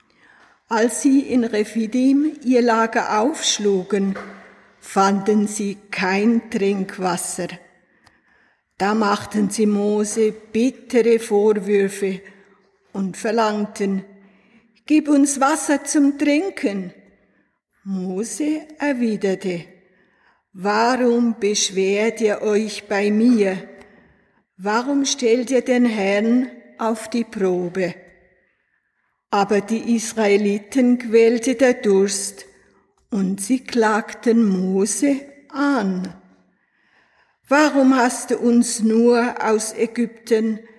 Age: 50-69